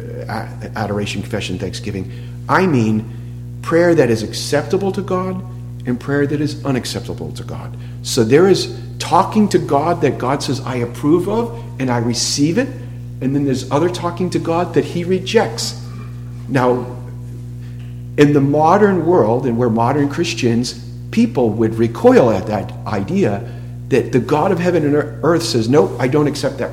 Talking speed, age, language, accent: 160 wpm, 50-69, English, American